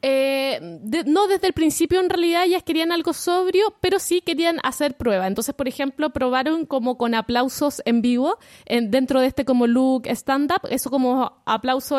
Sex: female